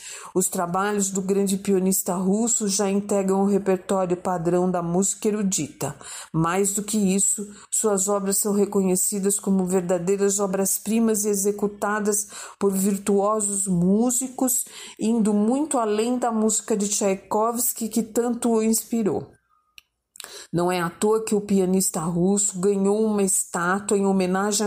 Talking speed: 130 wpm